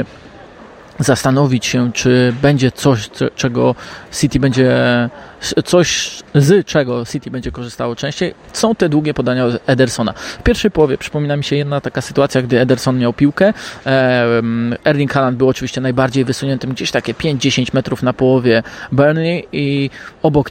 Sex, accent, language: male, native, Polish